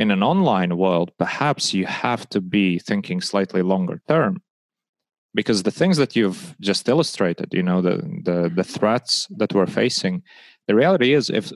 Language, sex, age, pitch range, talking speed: English, male, 30-49, 95-130 Hz, 165 wpm